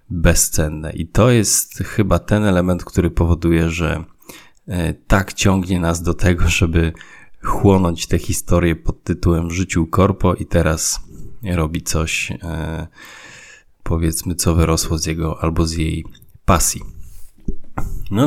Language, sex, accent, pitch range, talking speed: Polish, male, native, 80-95 Hz, 120 wpm